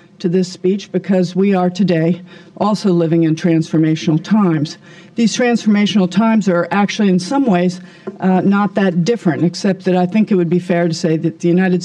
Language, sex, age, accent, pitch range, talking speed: English, female, 50-69, American, 170-195 Hz, 185 wpm